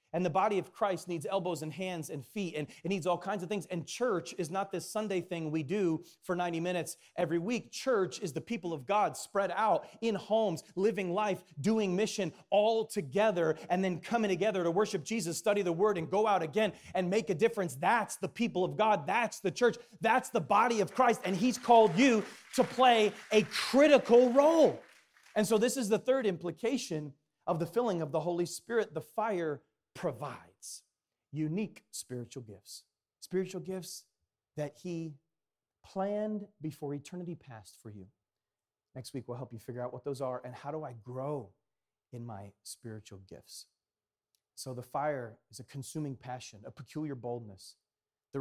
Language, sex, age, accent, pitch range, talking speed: English, male, 30-49, American, 135-205 Hz, 185 wpm